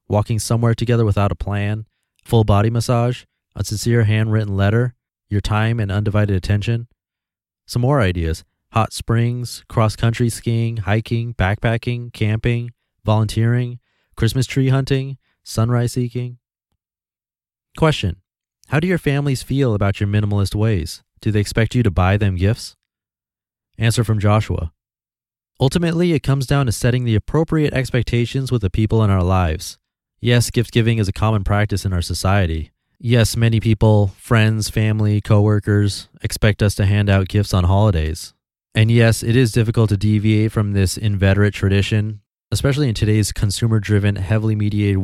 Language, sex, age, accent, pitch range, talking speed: English, male, 30-49, American, 100-120 Hz, 150 wpm